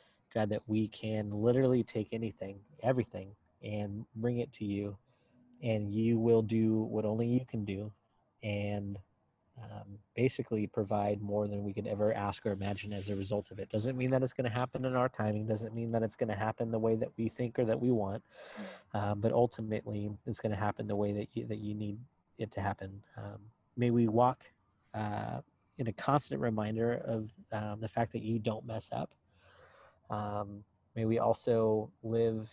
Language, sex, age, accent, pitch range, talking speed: English, male, 30-49, American, 105-115 Hz, 195 wpm